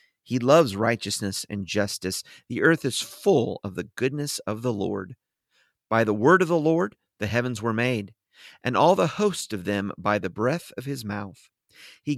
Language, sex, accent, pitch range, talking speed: English, male, American, 105-150 Hz, 185 wpm